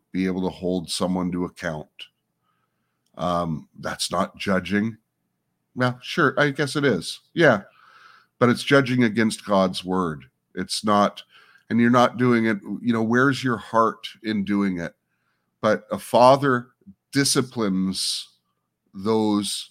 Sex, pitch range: male, 85-110 Hz